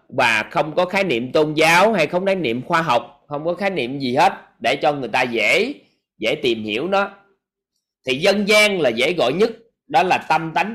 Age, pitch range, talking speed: 20-39, 140-200 Hz, 220 wpm